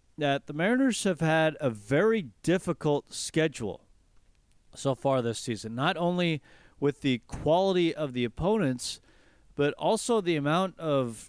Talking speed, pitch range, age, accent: 140 wpm, 125-160 Hz, 40-59, American